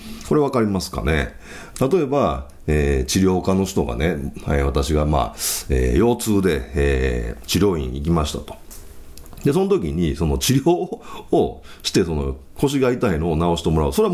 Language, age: Japanese, 40-59